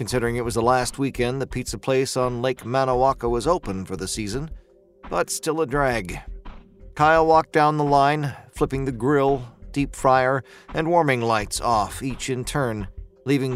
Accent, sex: American, male